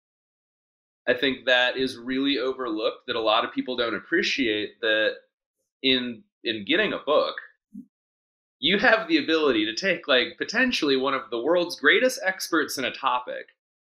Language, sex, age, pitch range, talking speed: English, male, 30-49, 120-195 Hz, 155 wpm